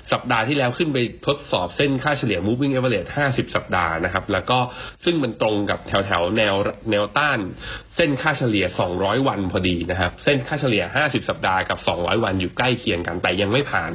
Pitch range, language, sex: 95-120 Hz, Thai, male